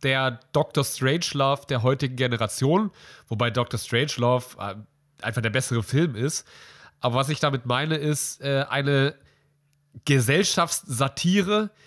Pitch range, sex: 120-155 Hz, male